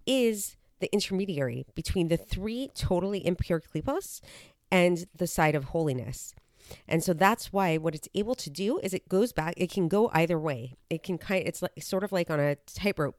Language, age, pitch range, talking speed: English, 40-59, 150-190 Hz, 200 wpm